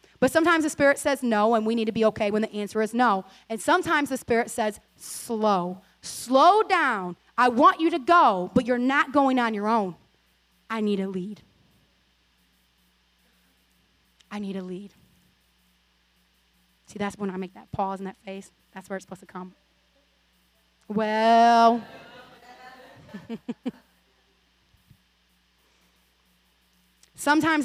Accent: American